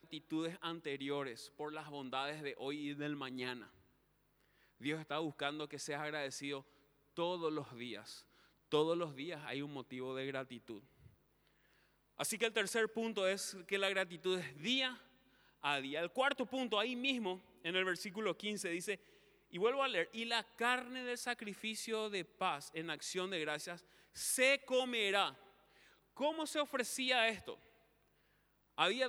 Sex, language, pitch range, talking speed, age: male, Spanish, 155-225 Hz, 150 wpm, 30-49